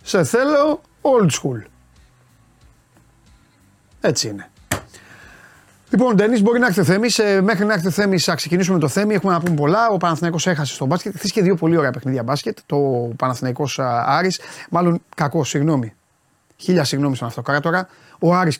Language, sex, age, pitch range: Greek, male, 30-49, 130-170 Hz